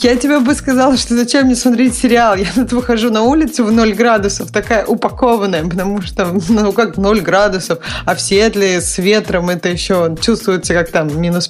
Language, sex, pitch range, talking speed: Russian, female, 185-235 Hz, 190 wpm